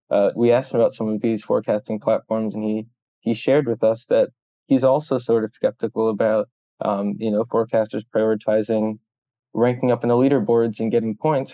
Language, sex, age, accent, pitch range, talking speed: English, male, 20-39, American, 110-125 Hz, 185 wpm